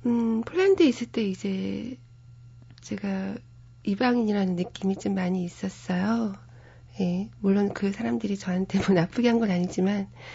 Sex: female